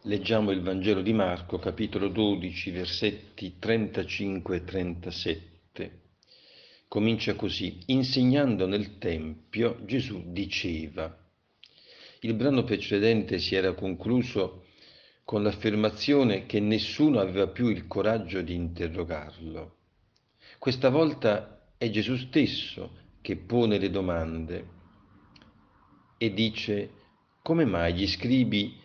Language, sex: Italian, male